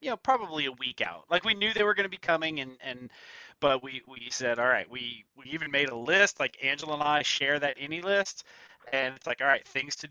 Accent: American